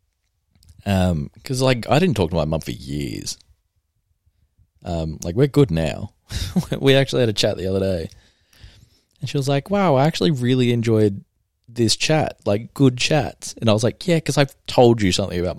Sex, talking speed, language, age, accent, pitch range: male, 190 wpm, English, 20-39, Australian, 85-115 Hz